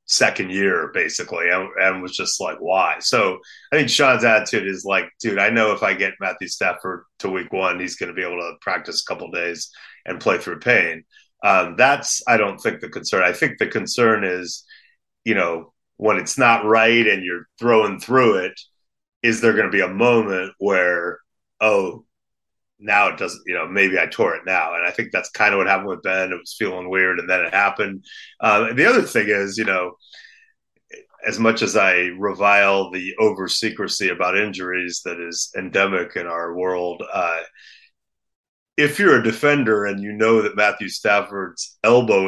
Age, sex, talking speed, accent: 30-49, male, 195 wpm, American